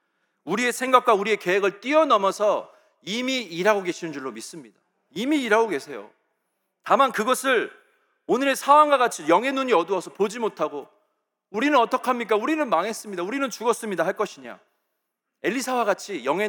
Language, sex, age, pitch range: Korean, male, 40-59, 185-255 Hz